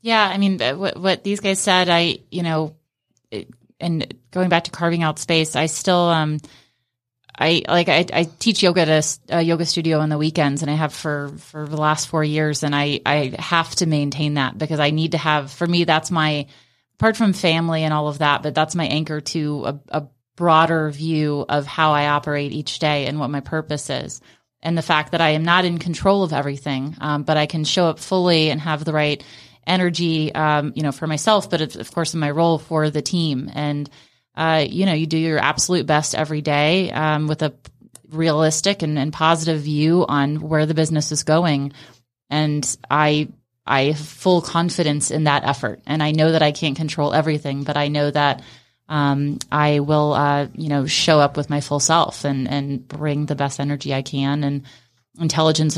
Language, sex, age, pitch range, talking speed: English, female, 20-39, 145-160 Hz, 210 wpm